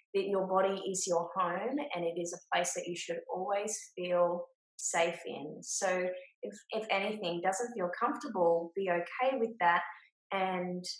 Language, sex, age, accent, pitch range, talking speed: English, female, 20-39, Australian, 175-210 Hz, 165 wpm